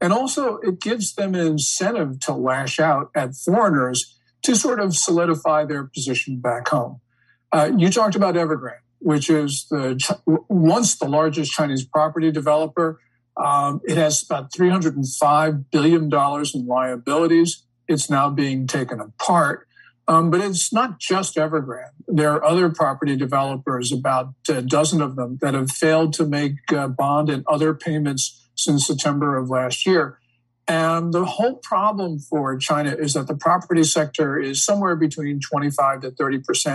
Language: English